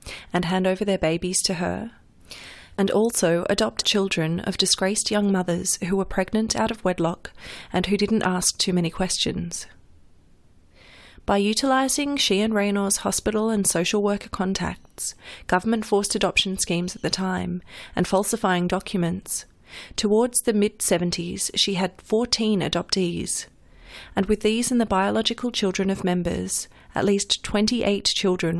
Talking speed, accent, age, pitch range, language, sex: 145 wpm, Australian, 30-49, 175-205 Hz, English, female